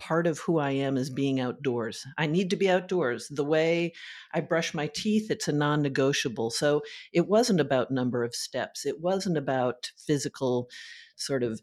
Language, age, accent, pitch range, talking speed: English, 50-69, American, 130-170 Hz, 180 wpm